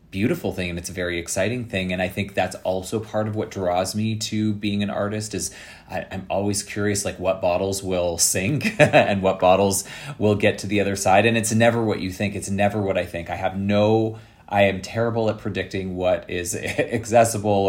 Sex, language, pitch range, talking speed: male, English, 90-105 Hz, 215 wpm